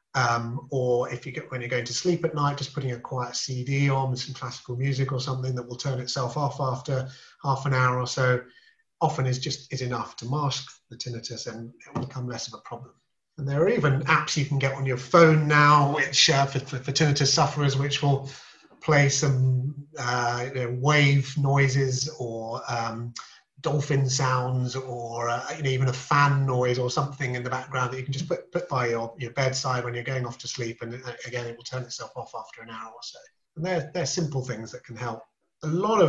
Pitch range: 125-140 Hz